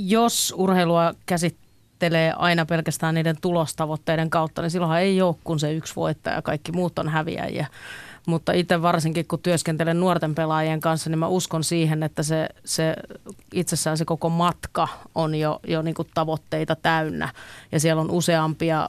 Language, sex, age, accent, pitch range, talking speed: Finnish, female, 30-49, native, 155-170 Hz, 145 wpm